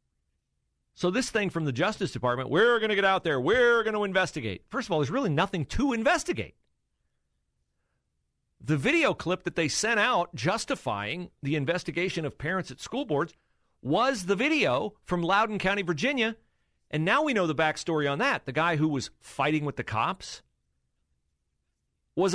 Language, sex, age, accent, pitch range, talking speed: English, male, 40-59, American, 115-185 Hz, 170 wpm